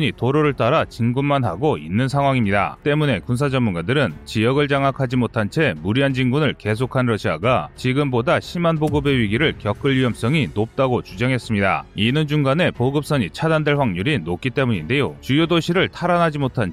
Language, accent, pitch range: Korean, native, 120-155 Hz